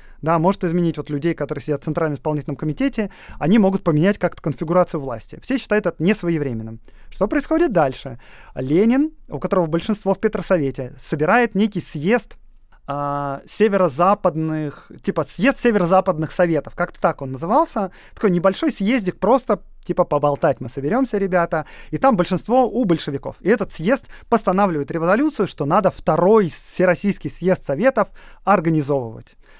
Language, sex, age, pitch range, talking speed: Russian, male, 30-49, 150-200 Hz, 140 wpm